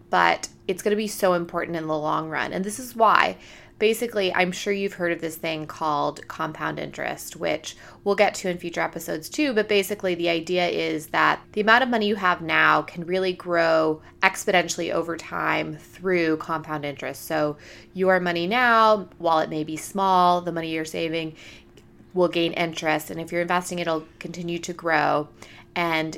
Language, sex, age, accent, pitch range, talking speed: English, female, 20-39, American, 160-185 Hz, 185 wpm